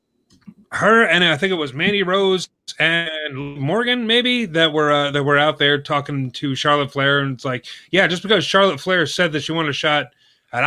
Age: 30-49